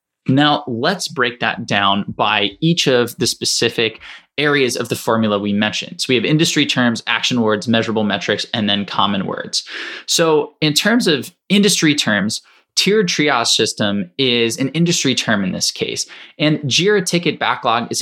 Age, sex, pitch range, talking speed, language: 20-39, male, 115-155 Hz, 165 wpm, English